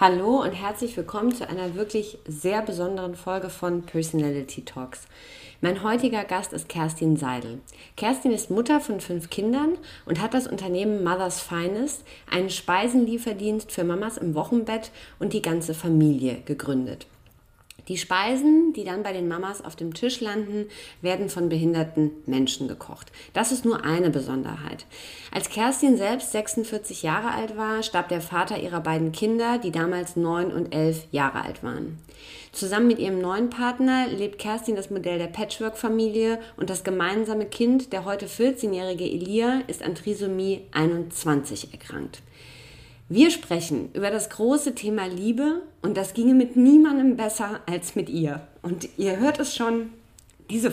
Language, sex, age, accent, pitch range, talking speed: German, female, 20-39, German, 170-230 Hz, 155 wpm